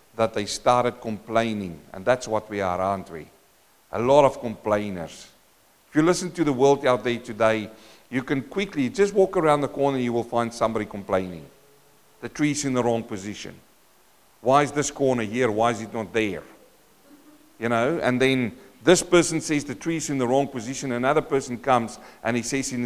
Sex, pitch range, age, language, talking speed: male, 115-165 Hz, 50-69, English, 190 wpm